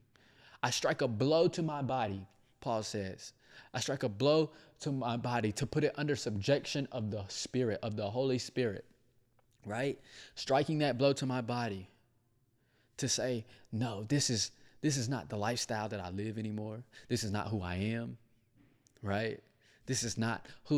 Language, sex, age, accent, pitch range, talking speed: English, male, 20-39, American, 115-140 Hz, 175 wpm